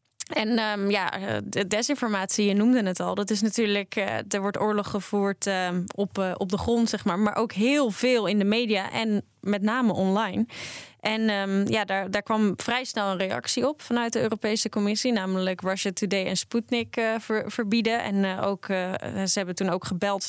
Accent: Dutch